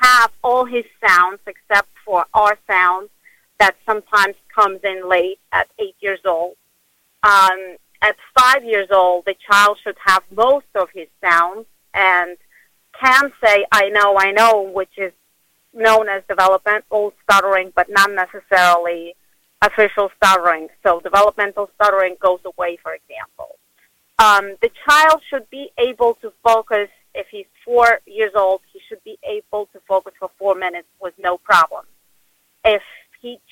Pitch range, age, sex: 185-220 Hz, 40-59, female